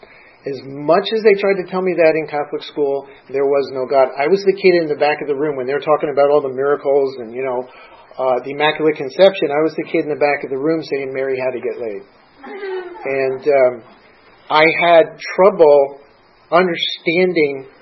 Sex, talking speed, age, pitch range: male, 210 wpm, 50-69, 140-175 Hz